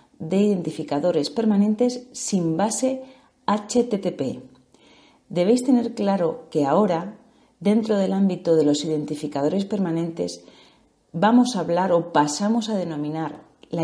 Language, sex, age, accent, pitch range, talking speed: Spanish, female, 40-59, Spanish, 165-235 Hz, 115 wpm